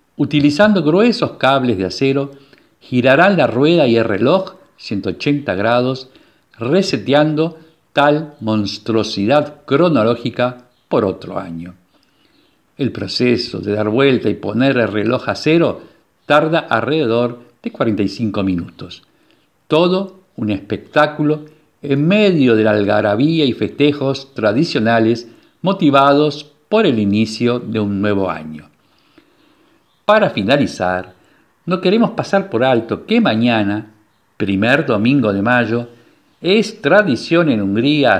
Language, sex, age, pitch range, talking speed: Spanish, male, 50-69, 105-150 Hz, 115 wpm